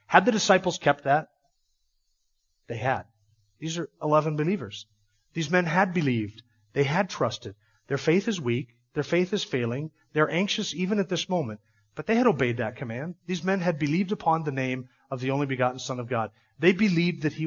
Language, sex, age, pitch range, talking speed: English, male, 40-59, 125-155 Hz, 190 wpm